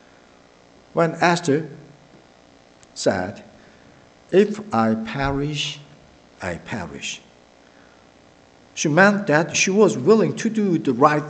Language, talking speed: English, 95 wpm